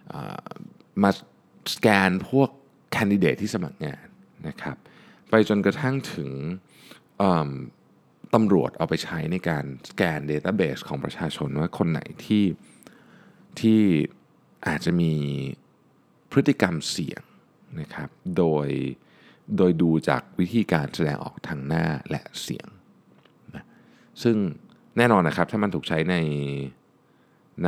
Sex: male